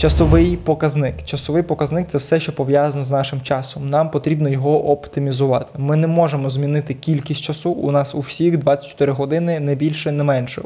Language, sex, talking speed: Ukrainian, male, 175 wpm